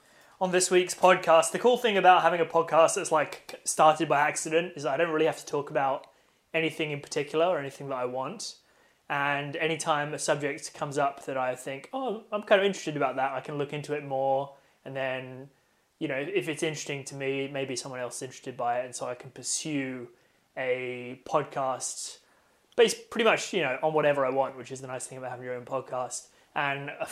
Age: 20-39